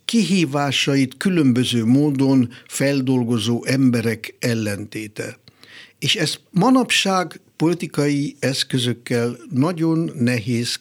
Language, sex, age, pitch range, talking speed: Hungarian, male, 60-79, 120-155 Hz, 70 wpm